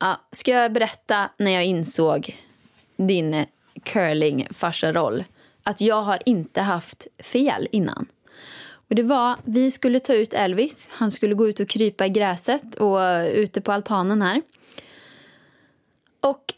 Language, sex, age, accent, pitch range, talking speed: Swedish, female, 20-39, native, 185-245 Hz, 140 wpm